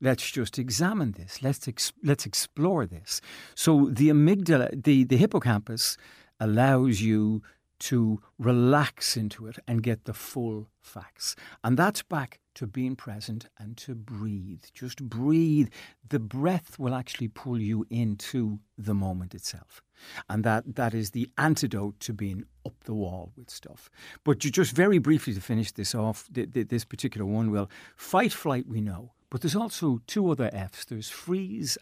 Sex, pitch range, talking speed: male, 110-145 Hz, 165 wpm